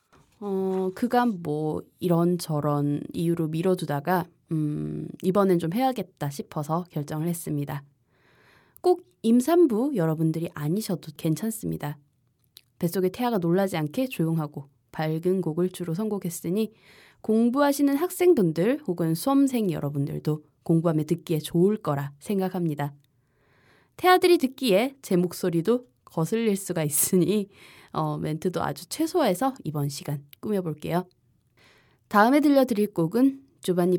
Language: Korean